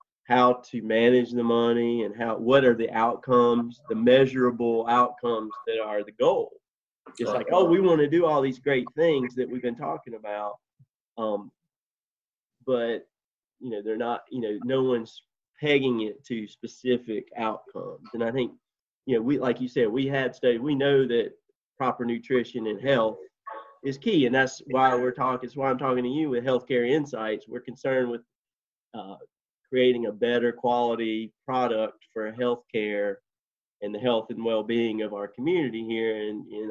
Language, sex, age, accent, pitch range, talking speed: English, male, 30-49, American, 115-135 Hz, 175 wpm